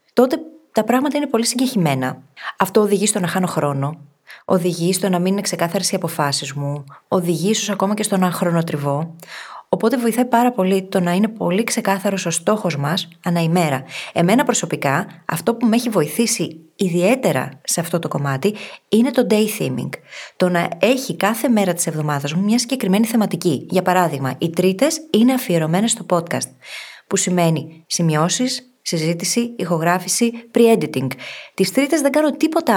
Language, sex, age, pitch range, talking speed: Greek, female, 20-39, 165-230 Hz, 160 wpm